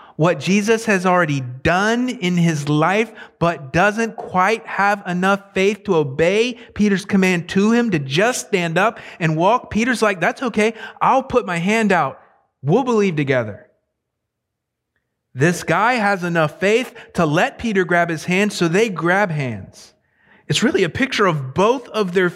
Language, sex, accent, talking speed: English, male, American, 165 wpm